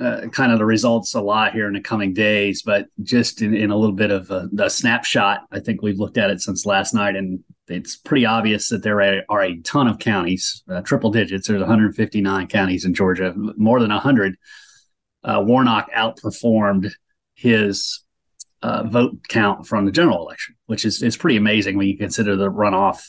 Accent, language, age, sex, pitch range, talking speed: American, English, 30-49, male, 100-115 Hz, 200 wpm